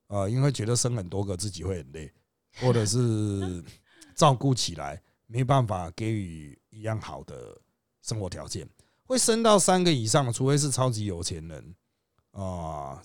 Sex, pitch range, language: male, 100-155 Hz, Chinese